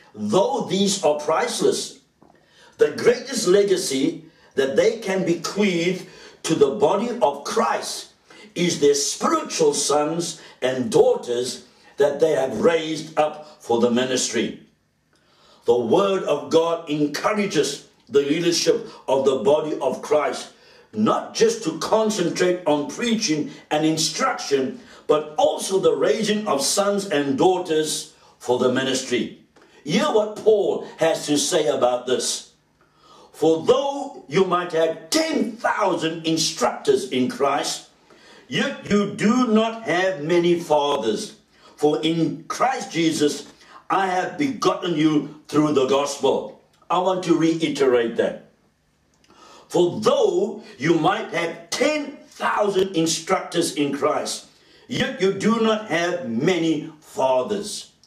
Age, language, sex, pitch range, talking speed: 60-79, English, male, 150-220 Hz, 120 wpm